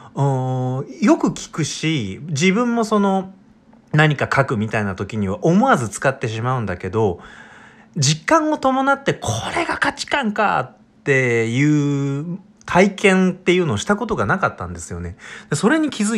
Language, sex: Japanese, male